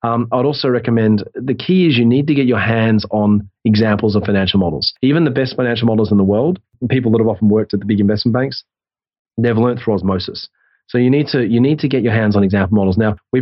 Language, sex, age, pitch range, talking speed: English, male, 30-49, 110-125 Hz, 245 wpm